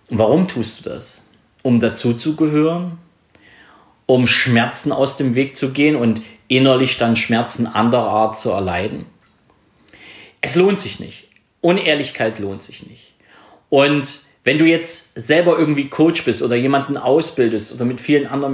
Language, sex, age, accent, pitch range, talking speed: German, male, 40-59, German, 110-140 Hz, 140 wpm